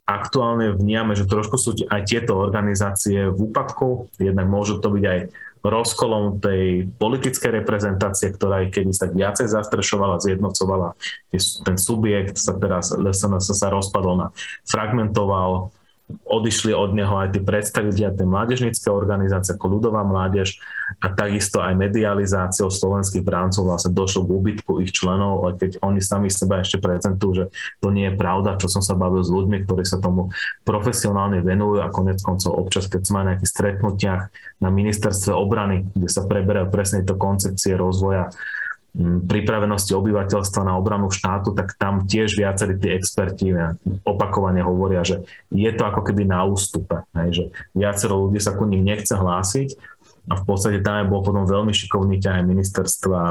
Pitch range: 95-105 Hz